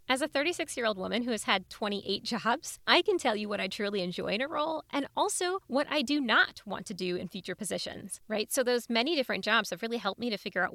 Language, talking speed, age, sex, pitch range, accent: English, 250 wpm, 20-39, female, 205-280 Hz, American